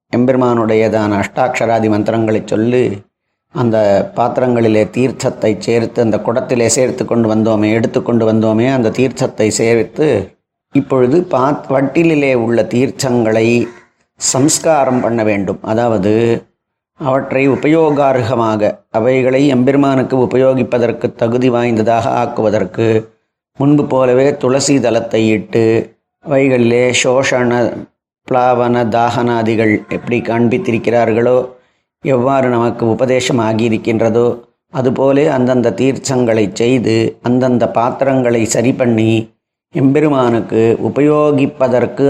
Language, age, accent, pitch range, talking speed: Tamil, 30-49, native, 115-130 Hz, 80 wpm